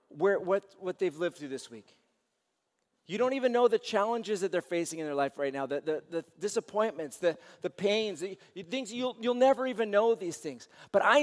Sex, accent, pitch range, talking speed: male, American, 175-235 Hz, 215 wpm